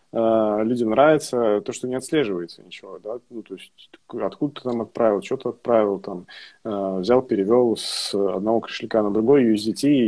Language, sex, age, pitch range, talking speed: Russian, male, 20-39, 105-125 Hz, 185 wpm